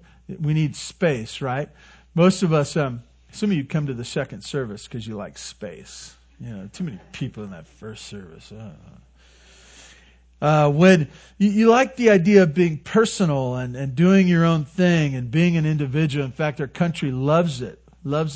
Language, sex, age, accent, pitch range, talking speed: English, male, 40-59, American, 120-175 Hz, 180 wpm